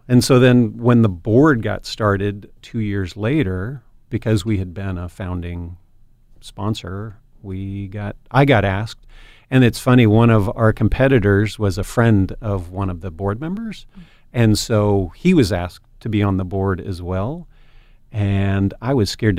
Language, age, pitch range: English, 40-59, 95-115 Hz